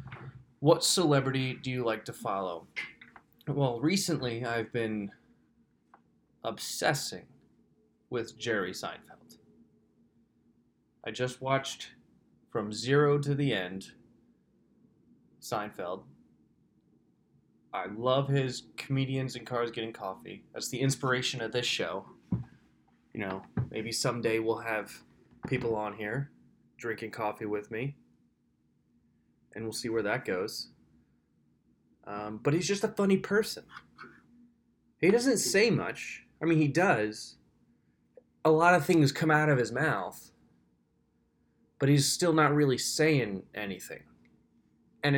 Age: 20-39